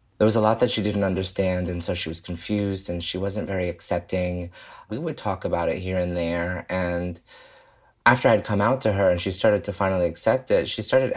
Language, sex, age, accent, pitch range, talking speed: English, male, 20-39, American, 90-110 Hz, 225 wpm